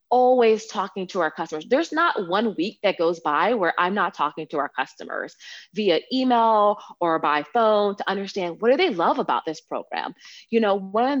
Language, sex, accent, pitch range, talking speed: English, female, American, 155-200 Hz, 195 wpm